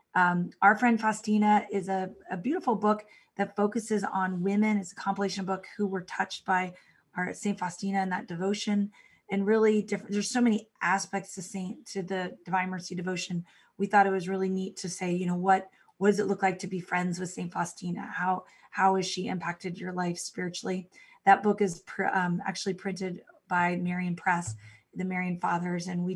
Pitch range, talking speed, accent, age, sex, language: 185-210 Hz, 195 wpm, American, 20-39, female, English